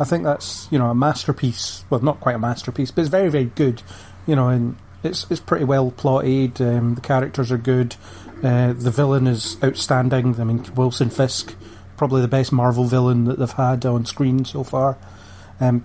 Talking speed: 195 wpm